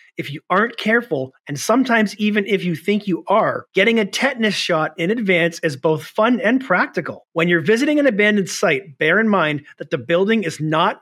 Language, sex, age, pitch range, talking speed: English, male, 40-59, 160-210 Hz, 200 wpm